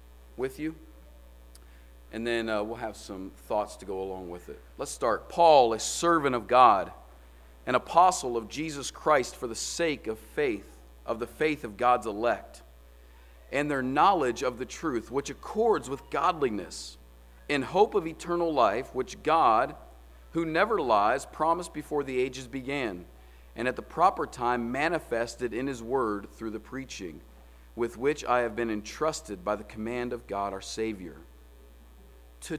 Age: 40-59